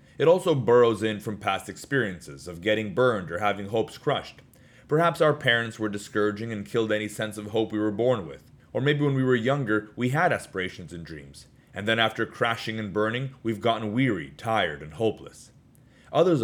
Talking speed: 195 wpm